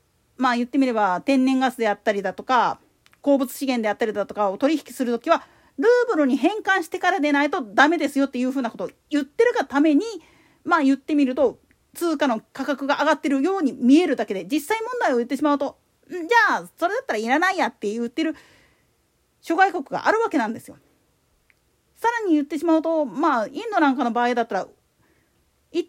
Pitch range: 265-365 Hz